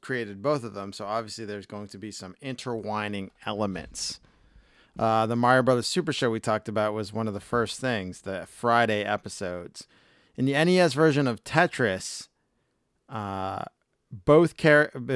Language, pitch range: English, 105-130 Hz